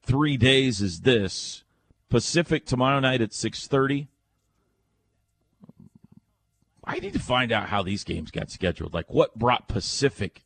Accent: American